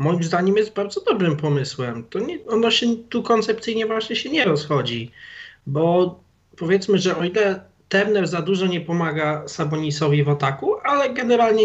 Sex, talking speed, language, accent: male, 160 wpm, Polish, native